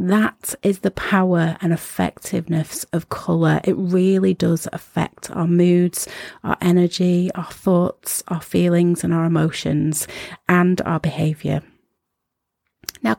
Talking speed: 125 wpm